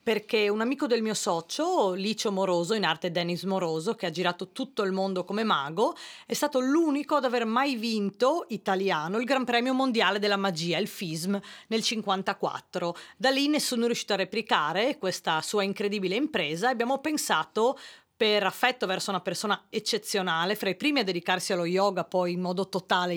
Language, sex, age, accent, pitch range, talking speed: Italian, female, 30-49, native, 185-235 Hz, 180 wpm